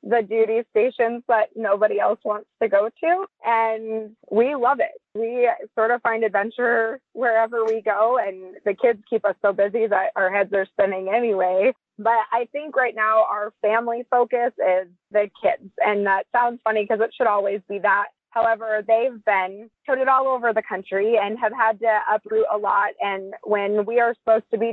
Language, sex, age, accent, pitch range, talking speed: English, female, 20-39, American, 195-230 Hz, 190 wpm